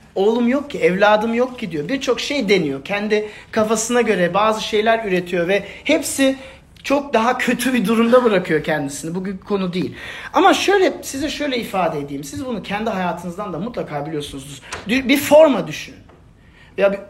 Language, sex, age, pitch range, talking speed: Turkish, male, 40-59, 150-250 Hz, 160 wpm